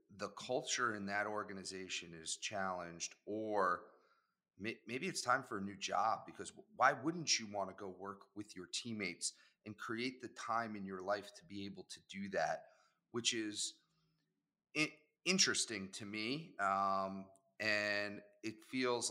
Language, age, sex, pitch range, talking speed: English, 30-49, male, 95-115 Hz, 150 wpm